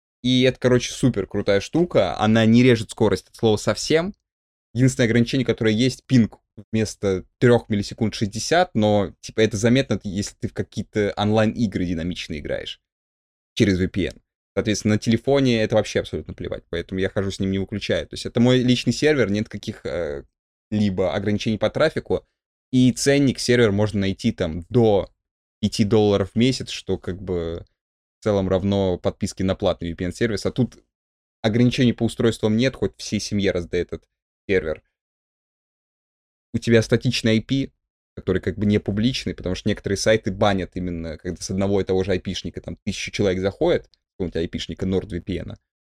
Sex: male